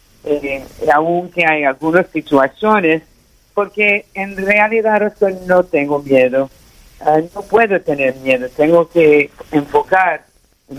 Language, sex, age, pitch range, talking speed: English, male, 50-69, 150-190 Hz, 115 wpm